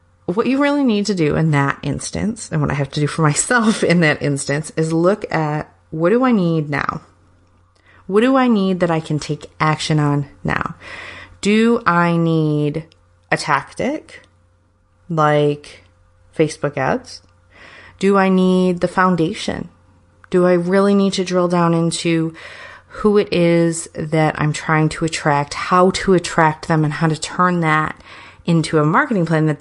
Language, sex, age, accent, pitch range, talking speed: English, female, 30-49, American, 145-185 Hz, 165 wpm